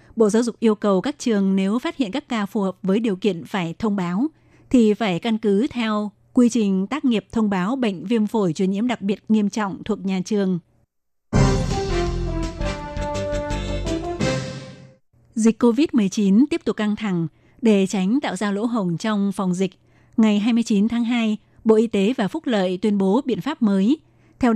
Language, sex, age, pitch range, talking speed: Vietnamese, female, 20-39, 190-230 Hz, 180 wpm